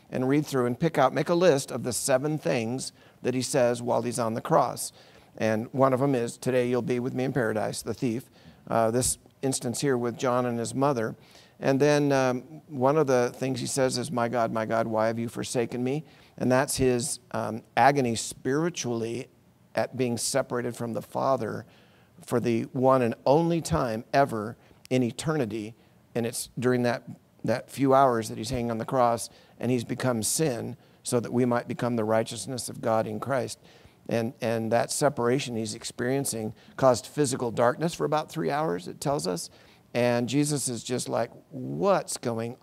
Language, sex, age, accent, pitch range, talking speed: English, male, 50-69, American, 115-135 Hz, 190 wpm